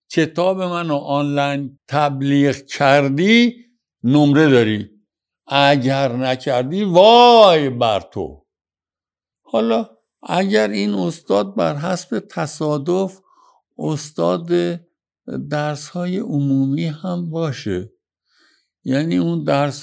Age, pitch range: 60-79, 135-175 Hz